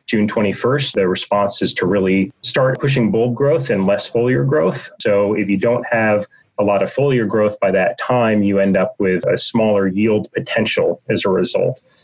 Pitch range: 100-125 Hz